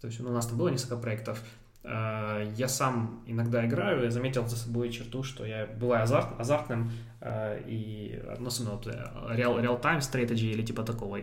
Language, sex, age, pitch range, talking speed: Russian, male, 20-39, 110-125 Hz, 175 wpm